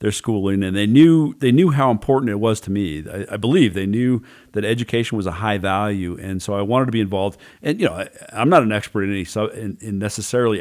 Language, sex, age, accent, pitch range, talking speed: English, male, 40-59, American, 100-120 Hz, 255 wpm